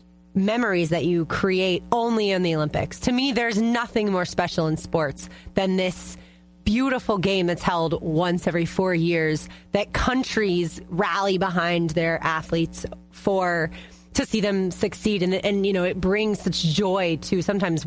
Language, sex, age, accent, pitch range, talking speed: English, female, 30-49, American, 165-215 Hz, 160 wpm